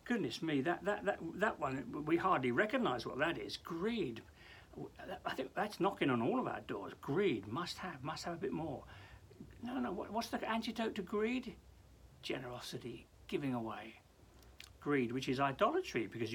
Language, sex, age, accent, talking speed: English, male, 60-79, British, 170 wpm